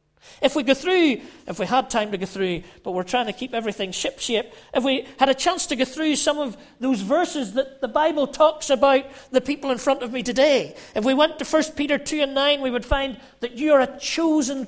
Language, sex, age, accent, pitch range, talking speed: English, male, 40-59, British, 230-310 Hz, 245 wpm